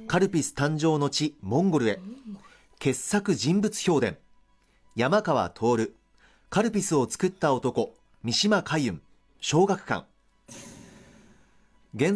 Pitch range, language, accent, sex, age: 130-190 Hz, Japanese, native, male, 40-59